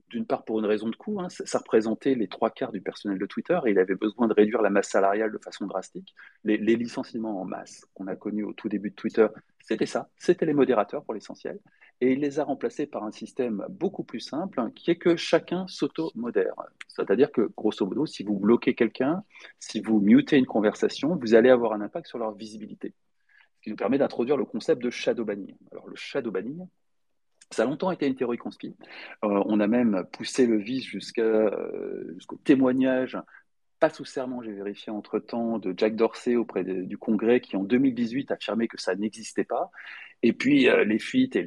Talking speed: 215 wpm